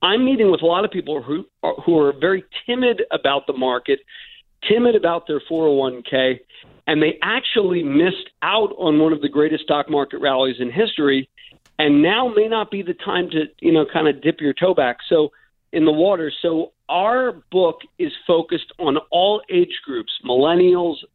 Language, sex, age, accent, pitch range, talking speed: English, male, 50-69, American, 140-190 Hz, 185 wpm